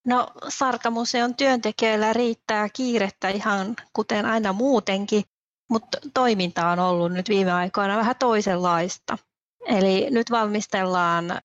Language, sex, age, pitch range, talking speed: Finnish, female, 30-49, 195-230 Hz, 110 wpm